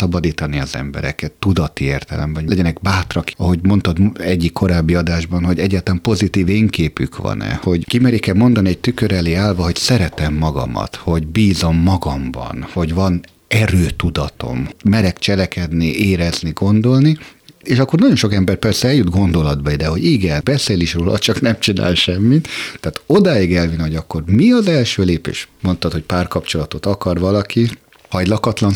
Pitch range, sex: 80-100 Hz, male